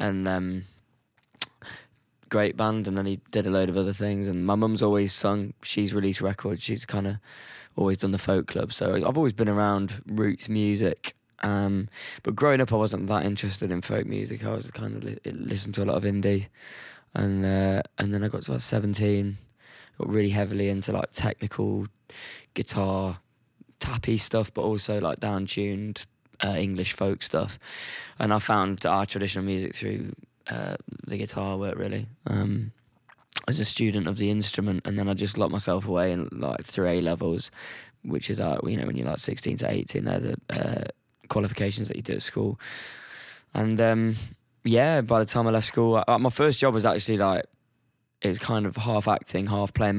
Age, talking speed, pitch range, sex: 20-39, 190 wpm, 100-110 Hz, male